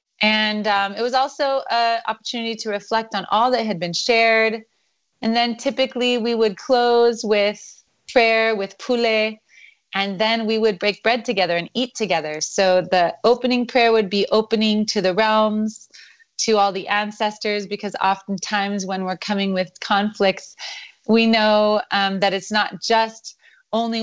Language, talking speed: English, 160 wpm